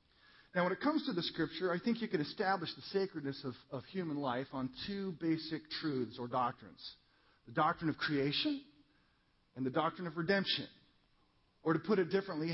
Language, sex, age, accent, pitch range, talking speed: English, male, 40-59, American, 140-180 Hz, 180 wpm